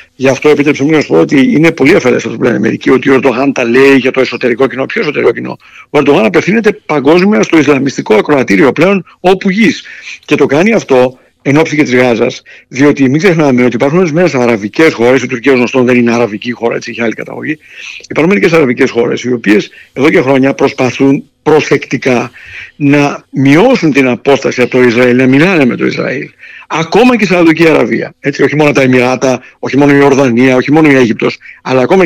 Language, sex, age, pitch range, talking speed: Greek, male, 60-79, 125-155 Hz, 195 wpm